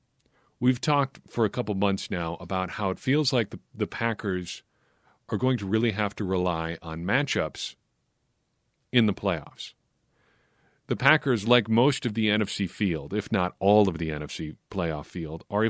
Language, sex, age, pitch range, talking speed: English, male, 40-59, 90-120 Hz, 170 wpm